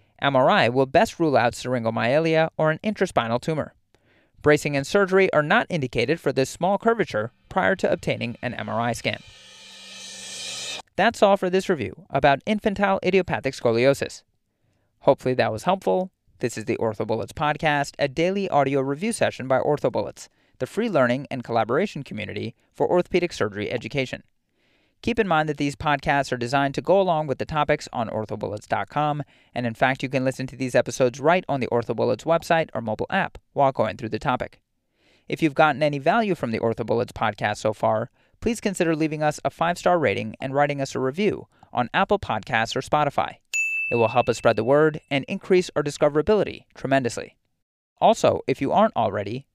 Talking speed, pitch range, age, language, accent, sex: 175 wpm, 120-170 Hz, 30-49, English, American, male